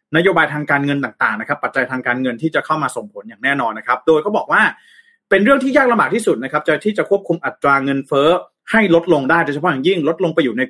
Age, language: 30-49, Thai